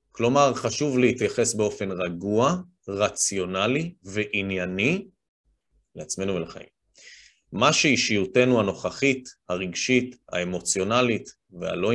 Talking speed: 75 wpm